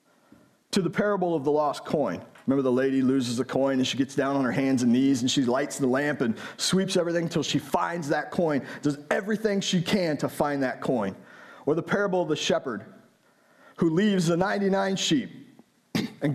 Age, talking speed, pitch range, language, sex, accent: 40-59, 200 wpm, 135-190 Hz, English, male, American